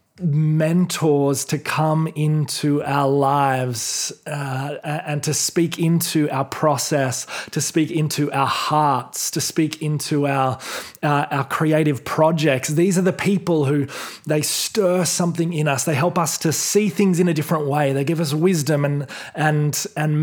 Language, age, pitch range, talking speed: English, 20-39, 140-175 Hz, 155 wpm